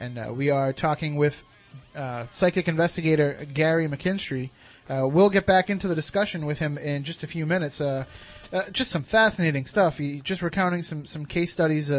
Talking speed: 190 wpm